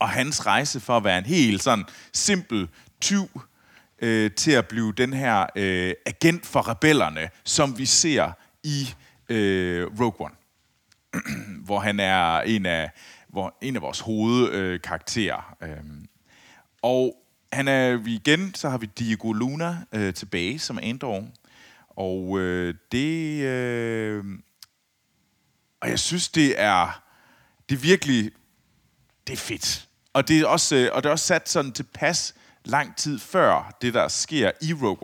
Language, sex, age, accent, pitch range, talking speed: Danish, male, 30-49, native, 95-130 Hz, 150 wpm